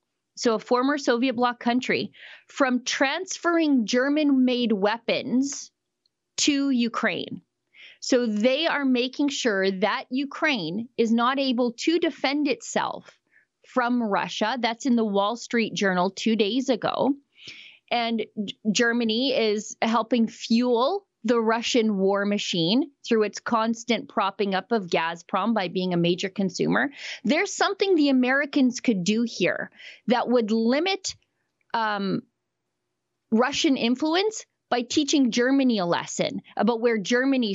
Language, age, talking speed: English, 30-49, 125 wpm